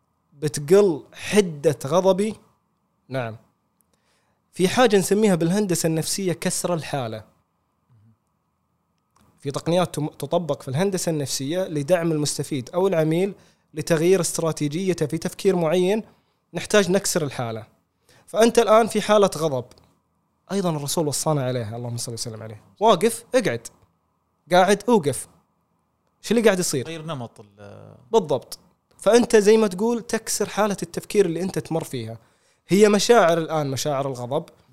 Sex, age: male, 20-39